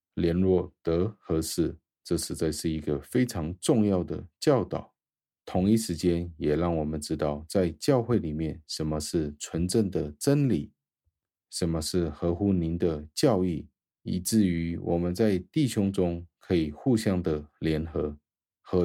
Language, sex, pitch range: Chinese, male, 80-95 Hz